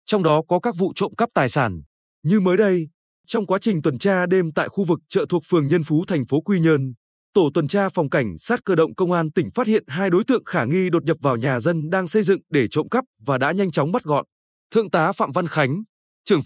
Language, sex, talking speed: Vietnamese, male, 260 wpm